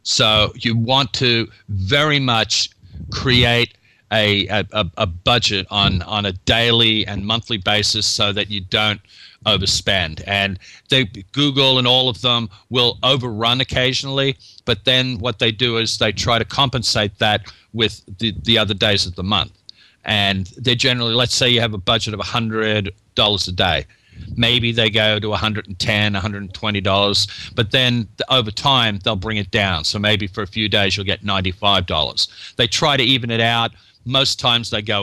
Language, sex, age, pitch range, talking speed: English, male, 40-59, 100-120 Hz, 165 wpm